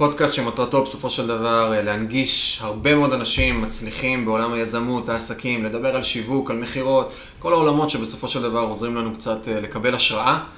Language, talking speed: Hebrew, 160 wpm